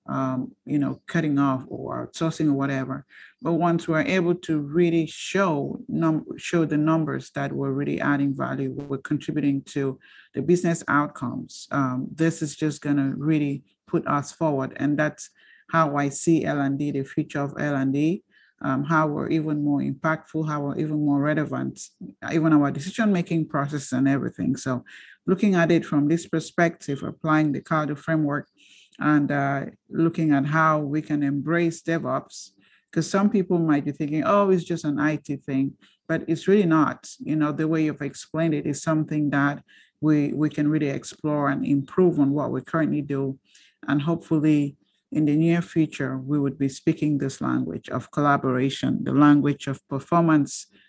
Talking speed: 170 wpm